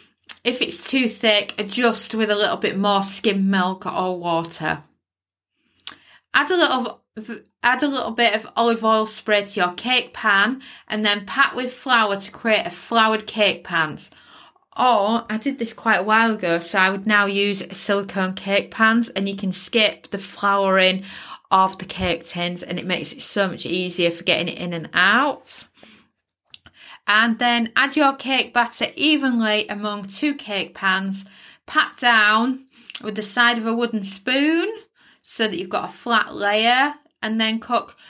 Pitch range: 195-235 Hz